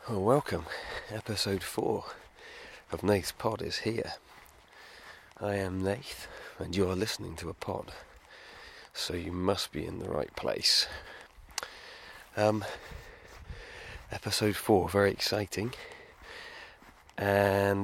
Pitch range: 80-100 Hz